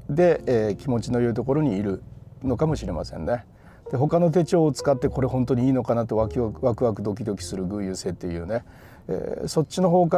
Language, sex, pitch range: Japanese, male, 100-150 Hz